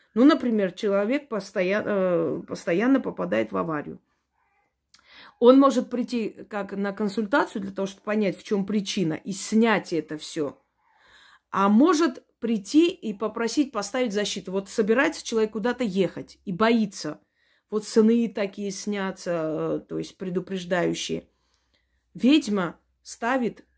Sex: female